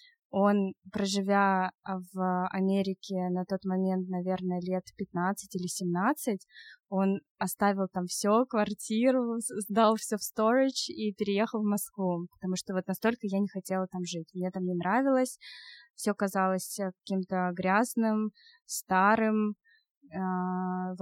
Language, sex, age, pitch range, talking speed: Russian, female, 20-39, 185-220 Hz, 125 wpm